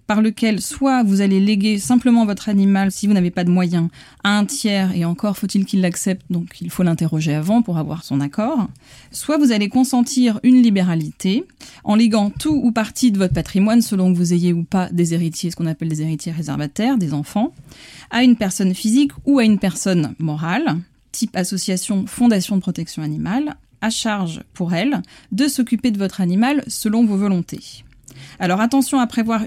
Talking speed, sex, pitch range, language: 190 wpm, female, 175-230 Hz, French